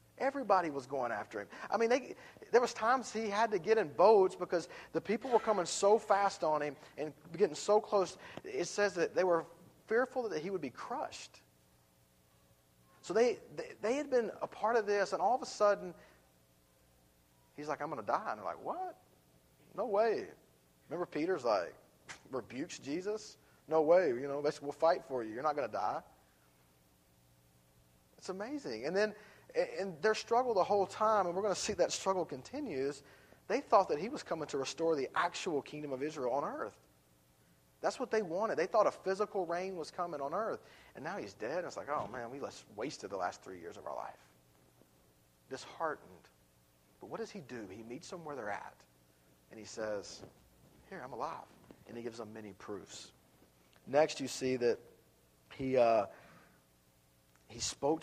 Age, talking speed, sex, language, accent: 40-59, 190 wpm, male, English, American